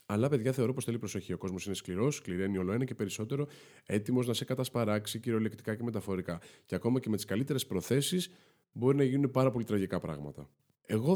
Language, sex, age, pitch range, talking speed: Greek, male, 20-39, 95-130 Hz, 205 wpm